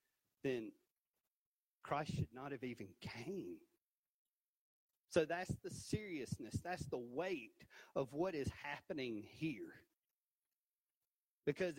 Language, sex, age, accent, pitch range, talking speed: English, male, 40-59, American, 140-200 Hz, 100 wpm